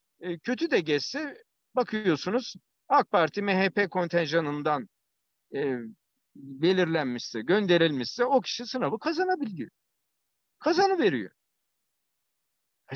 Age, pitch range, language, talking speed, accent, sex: 60-79, 130-215 Hz, Turkish, 80 wpm, native, male